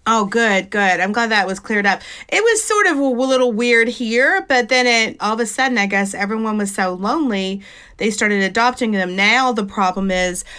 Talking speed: 220 wpm